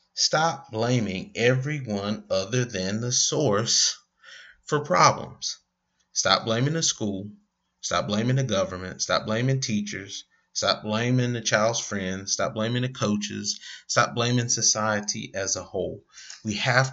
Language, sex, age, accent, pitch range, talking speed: English, male, 30-49, American, 100-115 Hz, 130 wpm